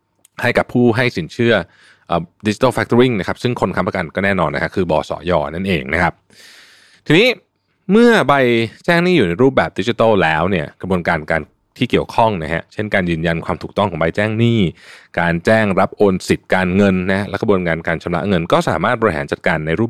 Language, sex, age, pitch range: Thai, male, 20-39, 90-115 Hz